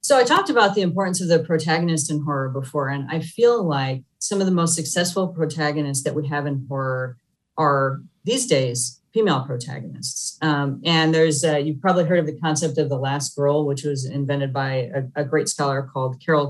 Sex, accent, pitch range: female, American, 145-175 Hz